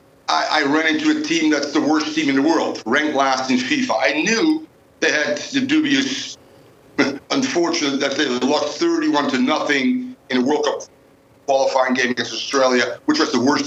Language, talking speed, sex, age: English, 185 wpm, male, 60-79